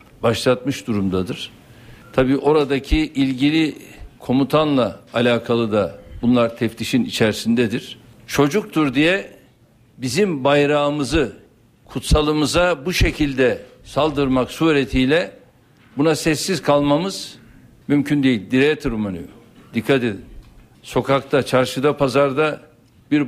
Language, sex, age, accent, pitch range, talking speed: Turkish, male, 60-79, native, 125-160 Hz, 85 wpm